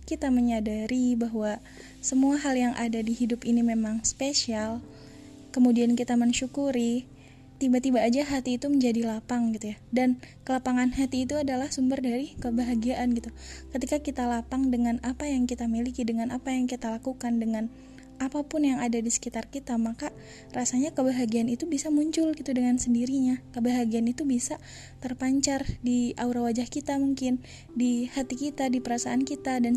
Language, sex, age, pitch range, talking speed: Indonesian, female, 20-39, 230-260 Hz, 155 wpm